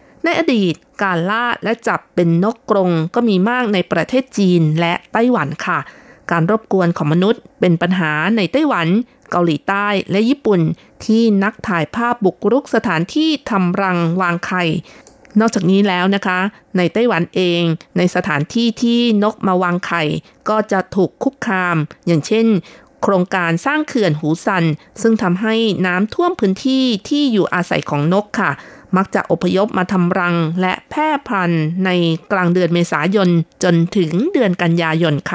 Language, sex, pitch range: Thai, female, 175-220 Hz